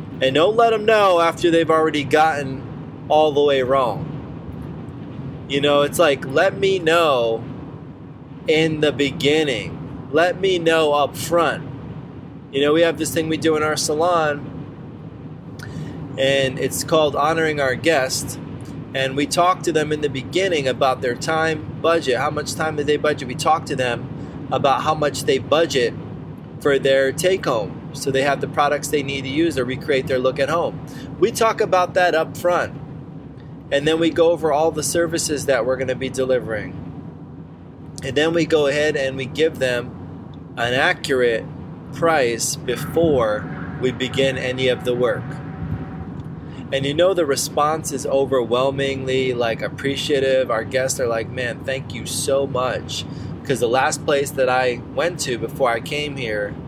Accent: American